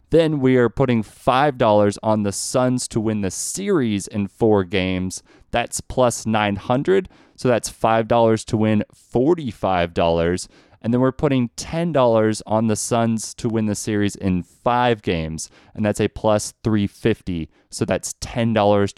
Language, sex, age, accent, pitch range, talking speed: English, male, 30-49, American, 100-135 Hz, 150 wpm